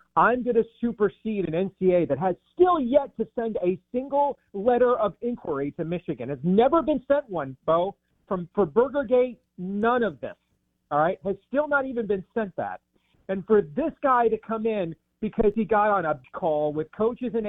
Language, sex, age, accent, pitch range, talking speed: English, male, 40-59, American, 165-220 Hz, 190 wpm